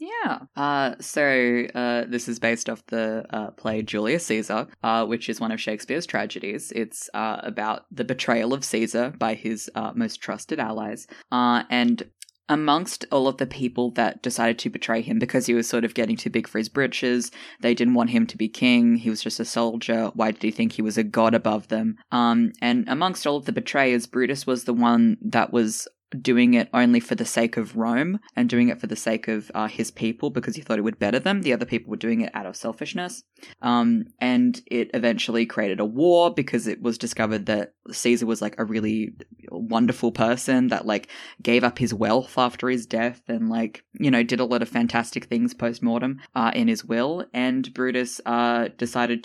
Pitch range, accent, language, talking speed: 115-130 Hz, Australian, English, 210 wpm